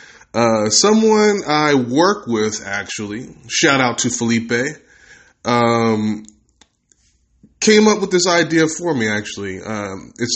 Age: 20-39